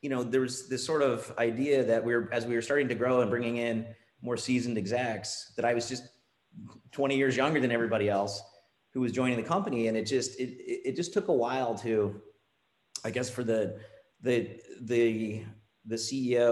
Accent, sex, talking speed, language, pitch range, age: American, male, 205 wpm, English, 105-125 Hz, 30-49